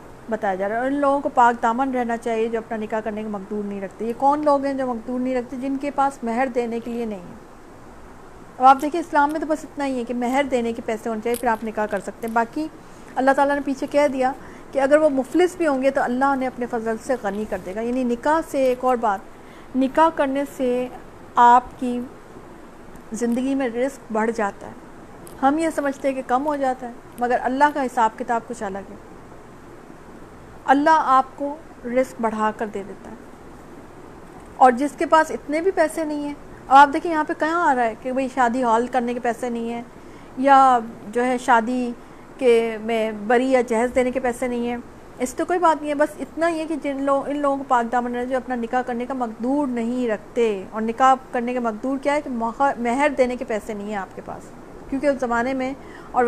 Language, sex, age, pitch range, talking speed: Urdu, female, 40-59, 235-275 Hz, 220 wpm